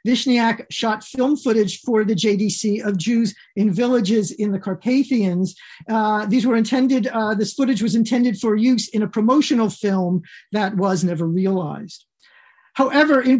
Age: 50-69